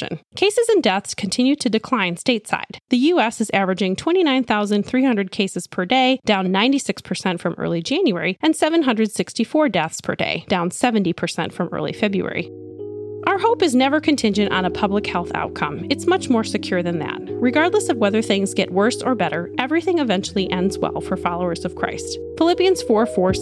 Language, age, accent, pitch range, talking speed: English, 30-49, American, 195-305 Hz, 165 wpm